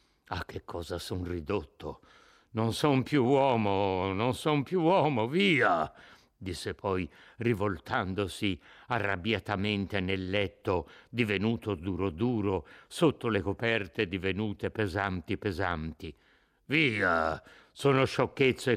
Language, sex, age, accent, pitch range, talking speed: Italian, male, 60-79, native, 95-140 Hz, 100 wpm